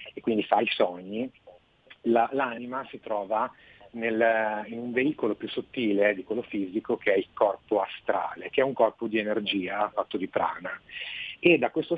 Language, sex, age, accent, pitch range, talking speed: Italian, male, 40-59, native, 100-120 Hz, 165 wpm